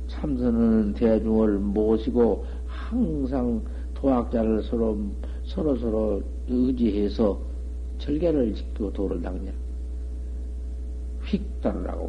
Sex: male